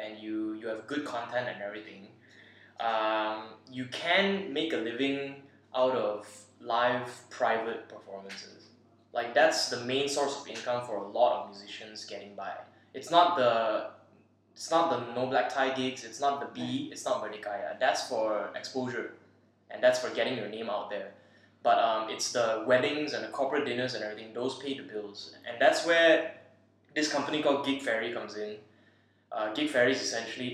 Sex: male